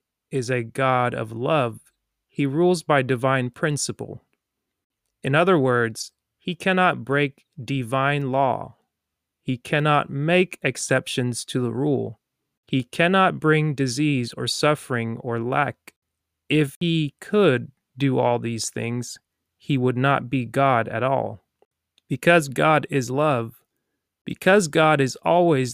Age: 20-39